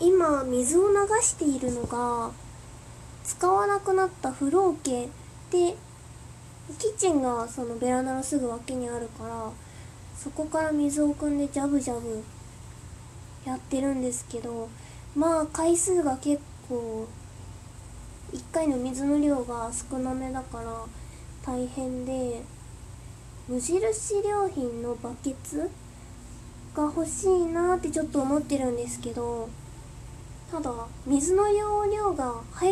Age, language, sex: 20-39, Japanese, female